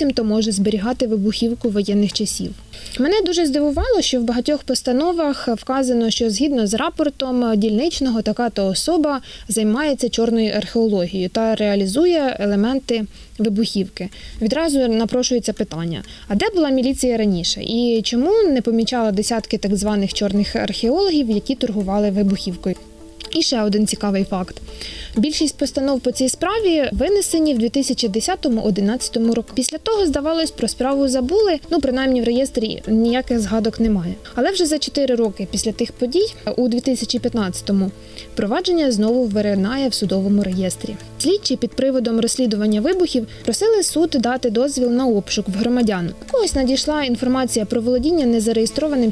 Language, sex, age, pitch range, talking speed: Ukrainian, female, 20-39, 215-275 Hz, 135 wpm